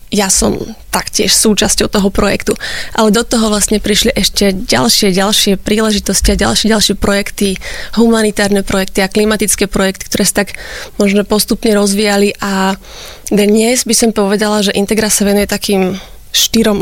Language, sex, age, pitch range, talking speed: Slovak, female, 20-39, 195-220 Hz, 145 wpm